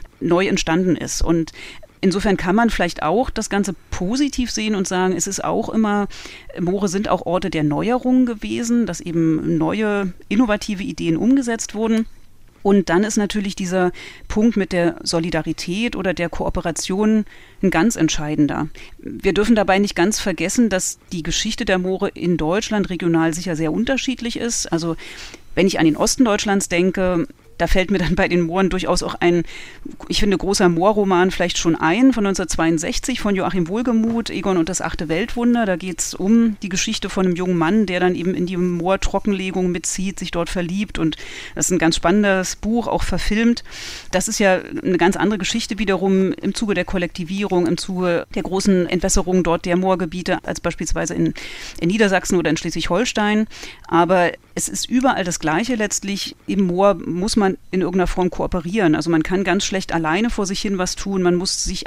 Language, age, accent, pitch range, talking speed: German, 30-49, German, 175-205 Hz, 180 wpm